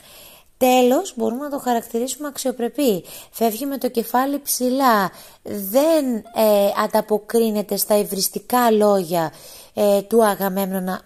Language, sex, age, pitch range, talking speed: Greek, female, 20-39, 190-240 Hz, 110 wpm